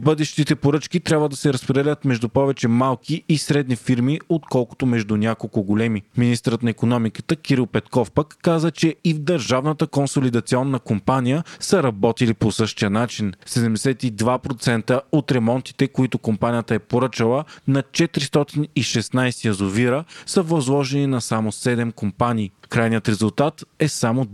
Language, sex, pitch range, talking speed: Bulgarian, male, 115-145 Hz, 135 wpm